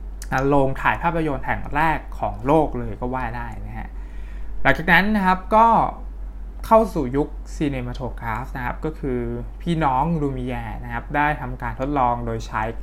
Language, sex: Thai, male